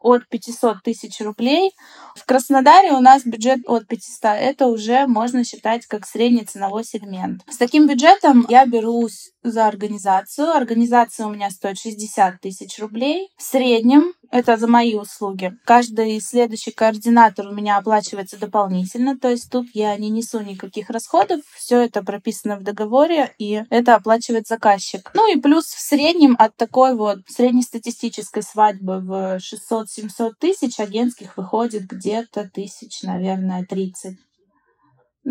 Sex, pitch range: female, 215-260 Hz